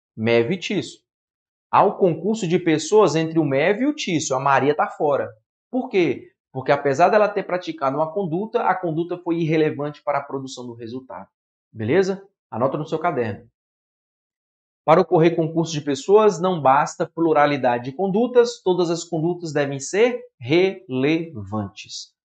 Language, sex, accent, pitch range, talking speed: Portuguese, male, Brazilian, 135-195 Hz, 155 wpm